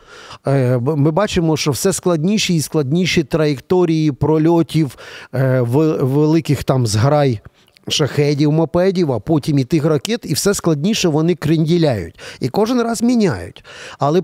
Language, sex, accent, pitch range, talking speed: Ukrainian, male, native, 135-190 Hz, 120 wpm